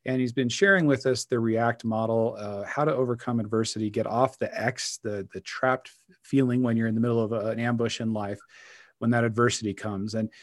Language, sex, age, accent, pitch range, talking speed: English, male, 40-59, American, 115-145 Hz, 215 wpm